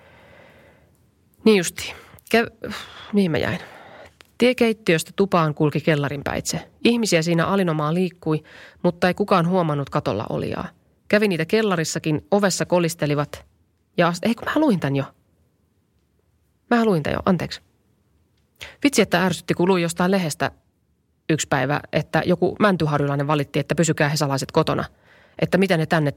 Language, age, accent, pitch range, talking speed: Finnish, 30-49, native, 145-205 Hz, 140 wpm